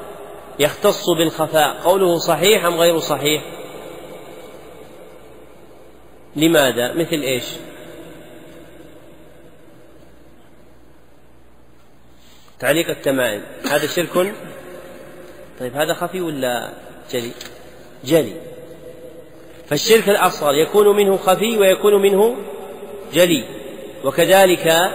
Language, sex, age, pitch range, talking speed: Arabic, male, 40-59, 145-185 Hz, 70 wpm